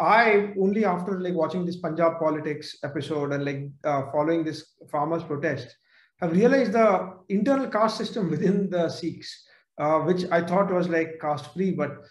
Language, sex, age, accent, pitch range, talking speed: English, male, 50-69, Indian, 170-225 Hz, 170 wpm